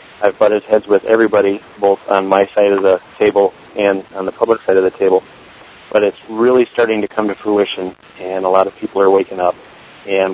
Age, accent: 40-59, American